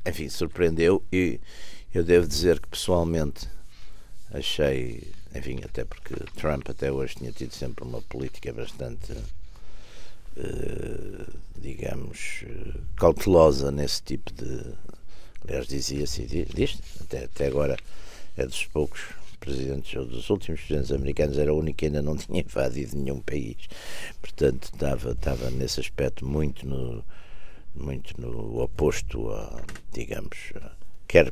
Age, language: 60-79, Portuguese